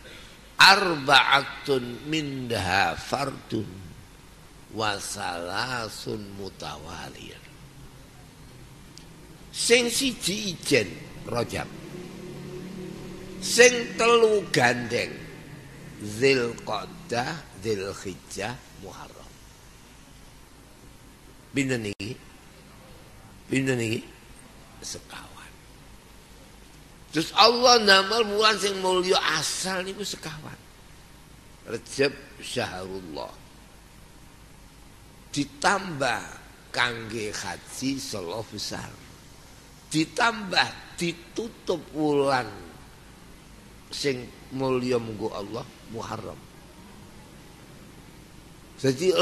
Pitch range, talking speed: 125-180 Hz, 50 wpm